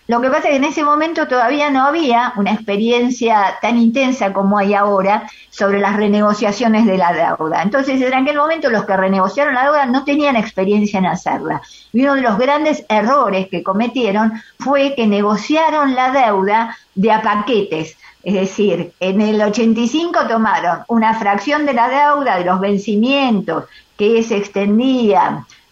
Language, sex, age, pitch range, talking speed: Spanish, female, 50-69, 205-270 Hz, 165 wpm